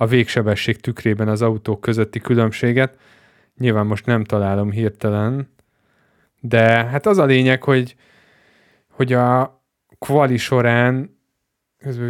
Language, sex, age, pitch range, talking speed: Hungarian, male, 20-39, 110-135 Hz, 115 wpm